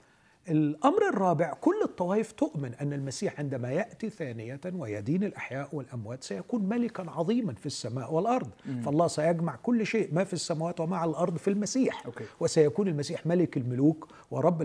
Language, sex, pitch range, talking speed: Arabic, male, 135-185 Hz, 150 wpm